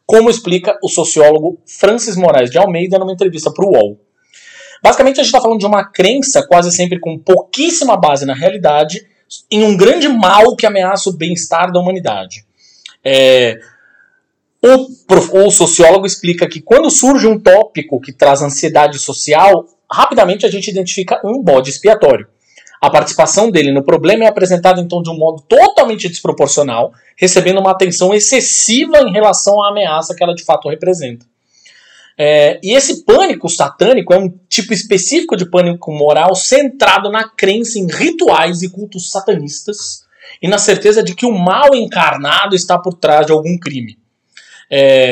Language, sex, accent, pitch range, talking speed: Portuguese, male, Brazilian, 155-215 Hz, 155 wpm